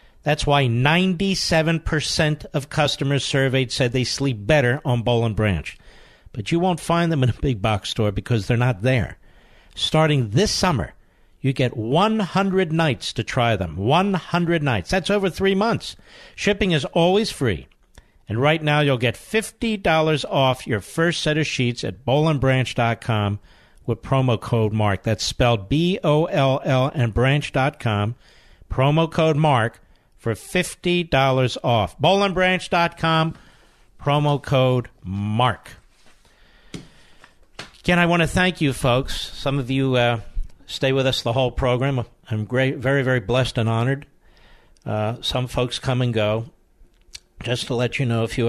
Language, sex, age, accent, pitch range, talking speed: English, male, 50-69, American, 110-150 Hz, 145 wpm